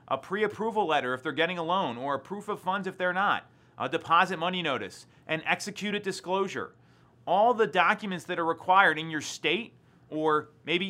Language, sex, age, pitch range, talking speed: English, male, 30-49, 150-200 Hz, 185 wpm